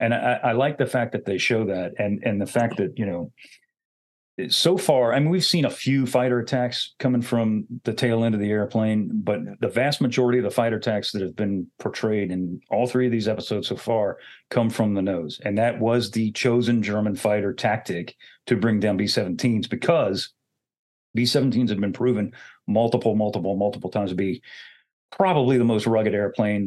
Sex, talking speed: male, 195 wpm